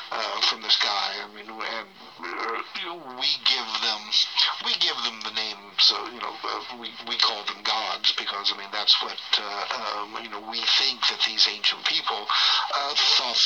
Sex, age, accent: male, 60-79, American